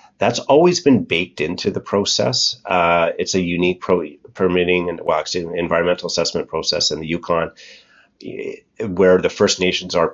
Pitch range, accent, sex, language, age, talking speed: 85-105 Hz, American, male, English, 30-49, 160 wpm